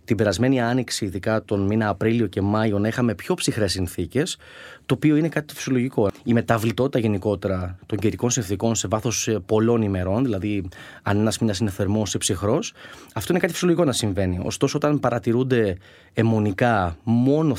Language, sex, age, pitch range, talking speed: Greek, male, 20-39, 100-125 Hz, 165 wpm